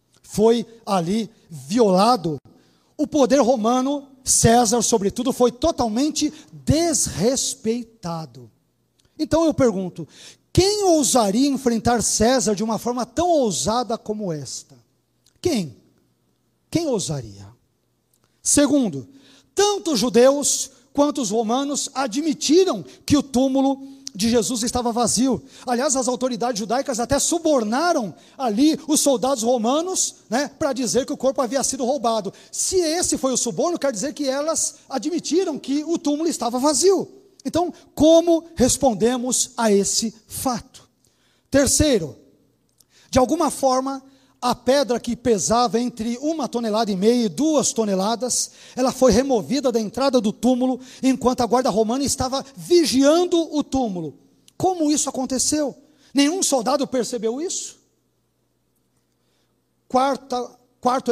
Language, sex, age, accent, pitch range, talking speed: Portuguese, male, 50-69, Brazilian, 230-285 Hz, 120 wpm